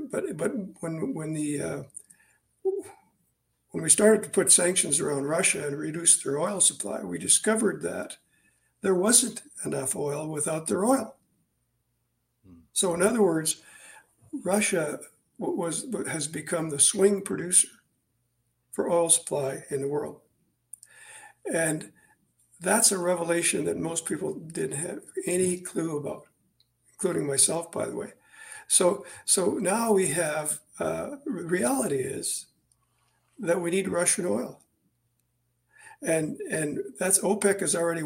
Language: English